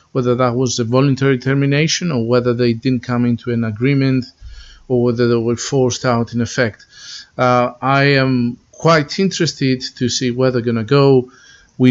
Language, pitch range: English, 115-135 Hz